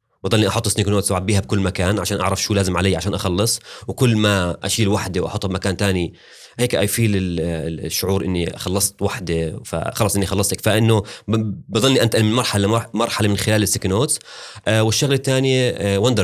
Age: 30-49